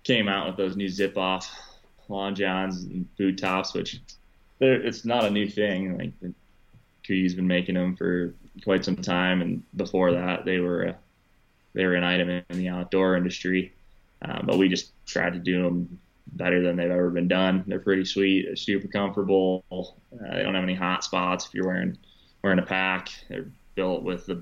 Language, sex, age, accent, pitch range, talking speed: English, male, 20-39, American, 90-95 Hz, 190 wpm